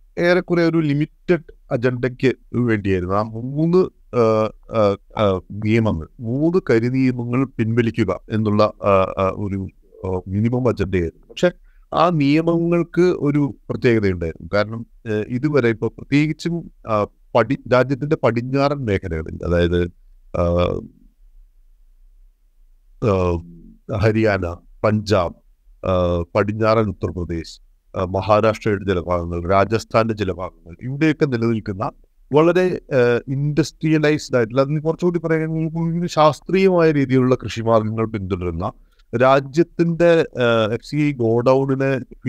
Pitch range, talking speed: 100-140 Hz, 80 wpm